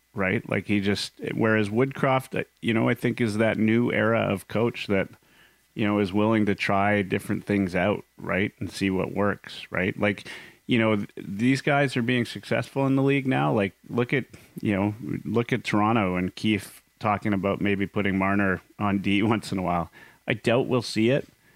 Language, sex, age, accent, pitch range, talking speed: English, male, 30-49, American, 100-115 Hz, 195 wpm